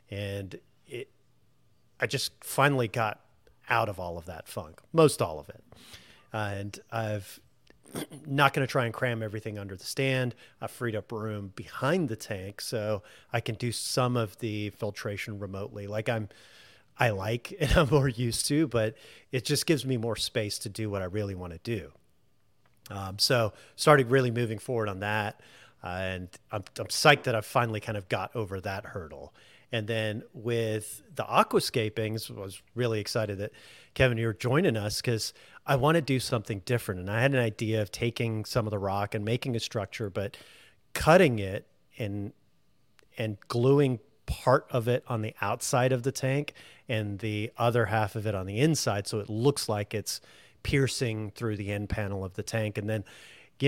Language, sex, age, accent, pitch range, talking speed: English, male, 40-59, American, 105-125 Hz, 185 wpm